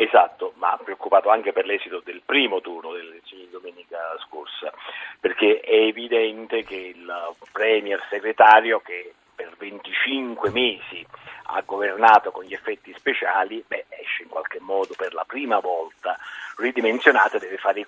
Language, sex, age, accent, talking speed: Italian, male, 50-69, native, 150 wpm